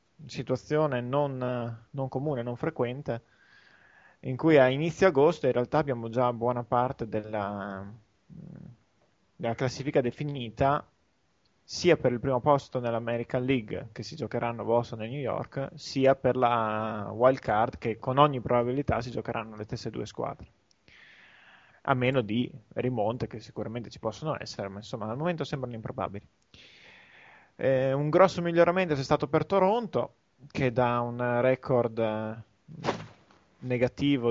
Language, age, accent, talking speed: Italian, 20-39, native, 140 wpm